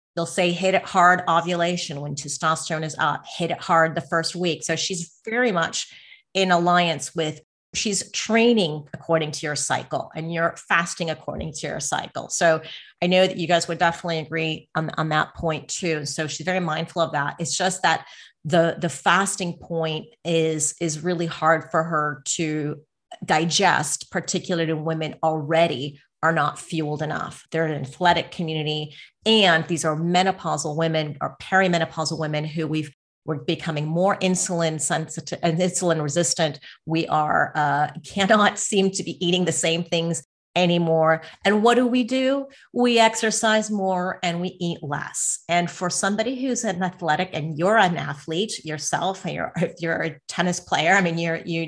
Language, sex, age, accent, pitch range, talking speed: English, female, 30-49, American, 155-180 Hz, 170 wpm